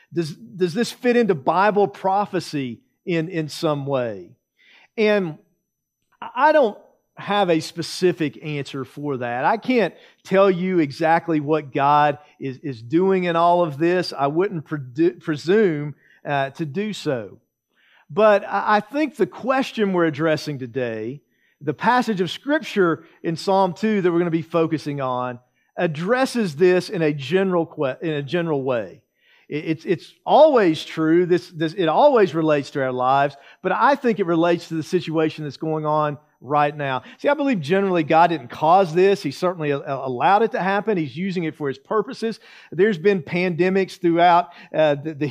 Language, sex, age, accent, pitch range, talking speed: English, male, 50-69, American, 155-190 Hz, 165 wpm